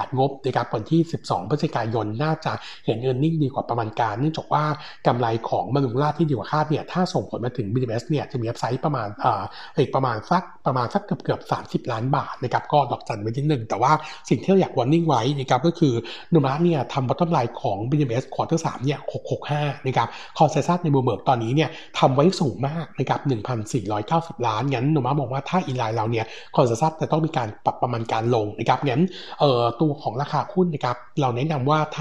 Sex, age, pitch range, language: male, 60-79, 120-155 Hz, Thai